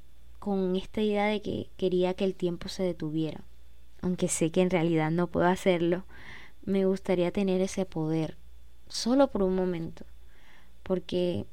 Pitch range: 165-195 Hz